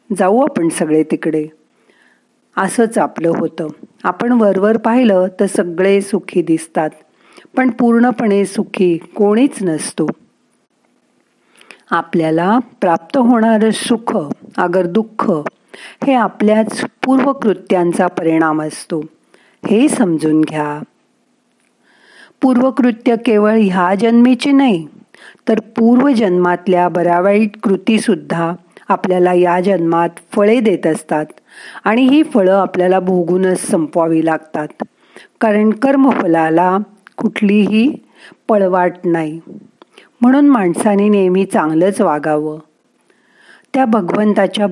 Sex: female